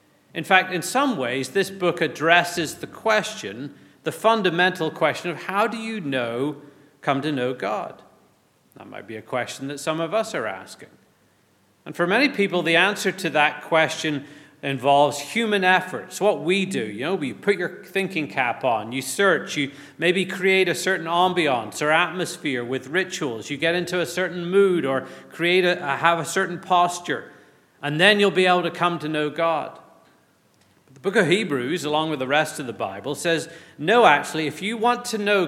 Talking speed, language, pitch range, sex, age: 185 wpm, English, 145-185 Hz, male, 40-59